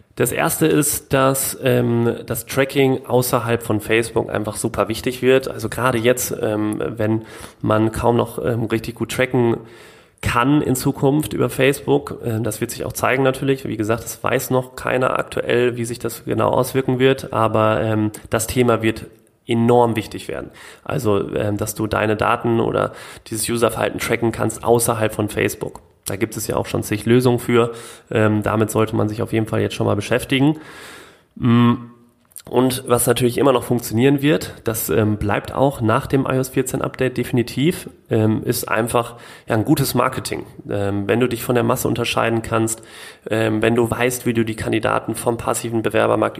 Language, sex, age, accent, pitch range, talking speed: German, male, 30-49, German, 110-125 Hz, 175 wpm